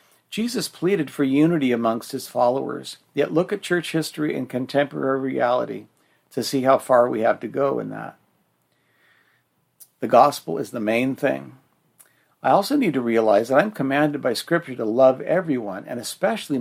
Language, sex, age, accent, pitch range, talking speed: English, male, 60-79, American, 125-150 Hz, 170 wpm